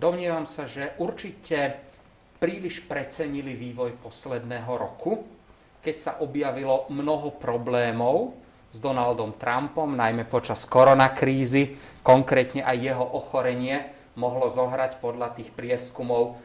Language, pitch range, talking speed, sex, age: Slovak, 125-150 Hz, 105 wpm, male, 40-59